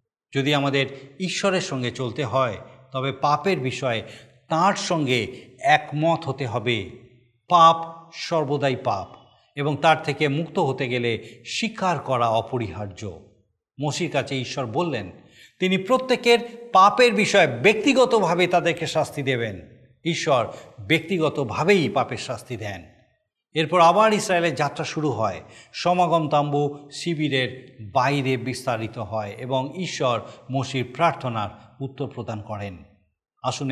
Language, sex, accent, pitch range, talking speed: Bengali, male, native, 120-160 Hz, 110 wpm